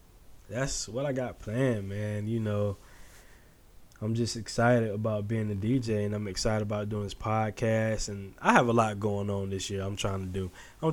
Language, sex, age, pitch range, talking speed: English, male, 20-39, 100-125 Hz, 200 wpm